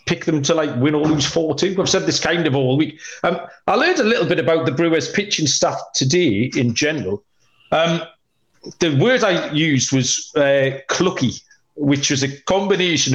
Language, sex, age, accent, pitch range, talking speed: English, male, 40-59, British, 135-185 Hz, 185 wpm